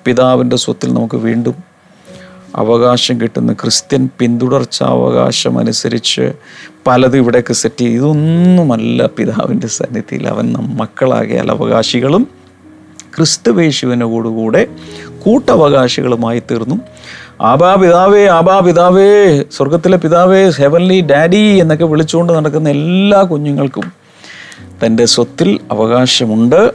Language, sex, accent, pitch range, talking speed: Malayalam, male, native, 130-180 Hz, 90 wpm